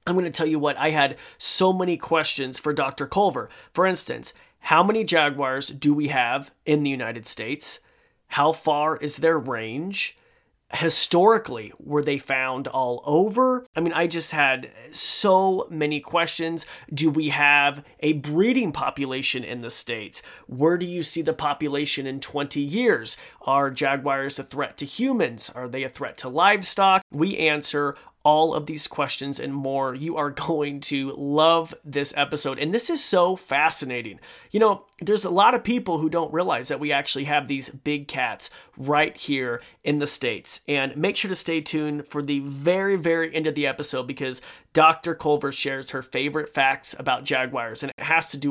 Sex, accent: male, American